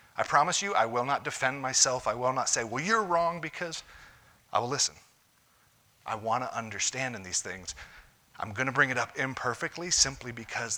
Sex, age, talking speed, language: male, 40-59, 185 wpm, English